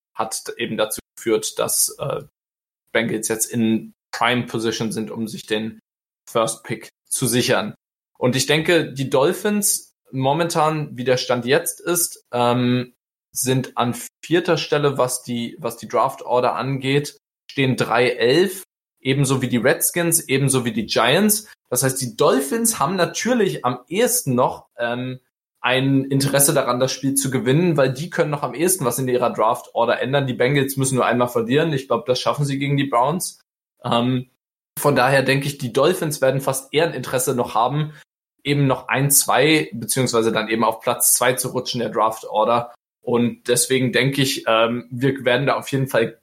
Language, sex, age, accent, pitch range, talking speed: German, male, 20-39, German, 120-150 Hz, 170 wpm